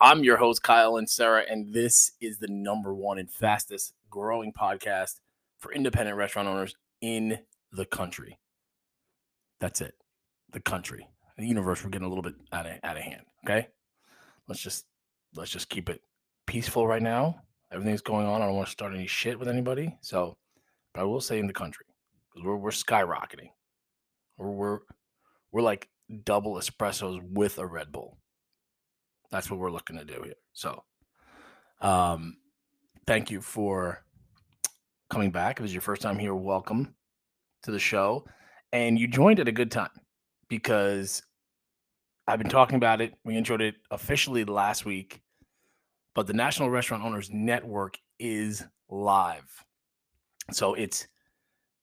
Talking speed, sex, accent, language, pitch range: 160 wpm, male, American, English, 100-115 Hz